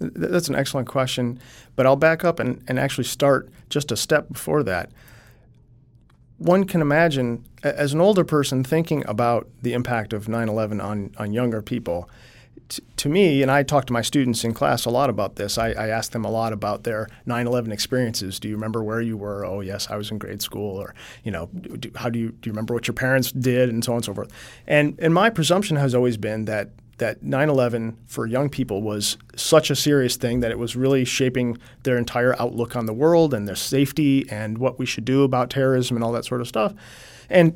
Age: 40-59